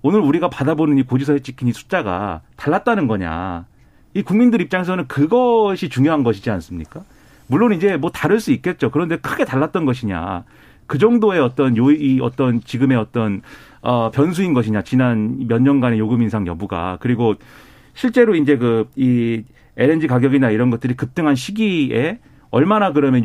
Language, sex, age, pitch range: Korean, male, 40-59, 115-160 Hz